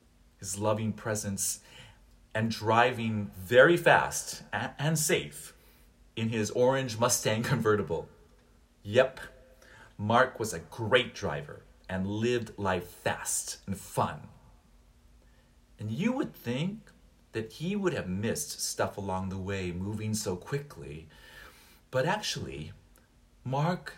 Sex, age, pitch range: male, 40-59, 85-120 Hz